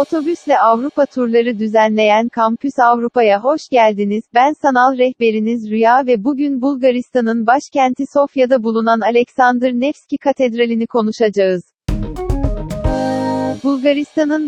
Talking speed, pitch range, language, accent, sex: 95 wpm, 225-270 Hz, Turkish, native, female